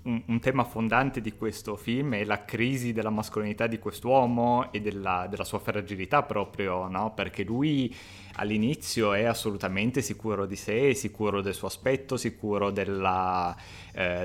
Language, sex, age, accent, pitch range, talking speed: Italian, male, 30-49, native, 100-115 Hz, 145 wpm